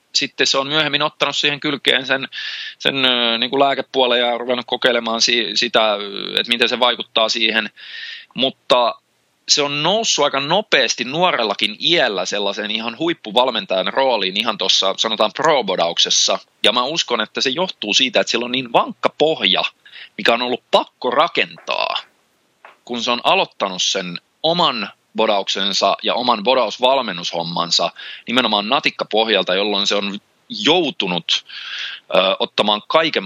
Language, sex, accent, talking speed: Finnish, male, native, 135 wpm